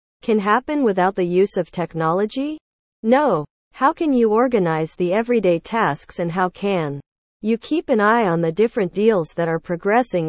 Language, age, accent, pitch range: English, 40-59, American, 165-225 Hz